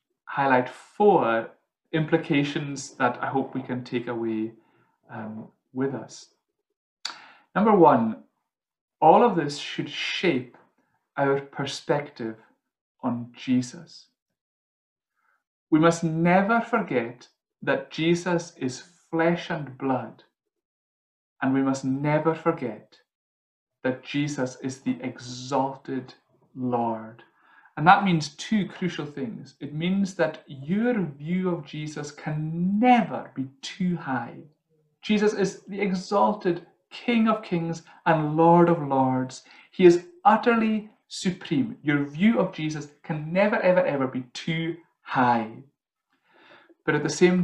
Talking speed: 120 wpm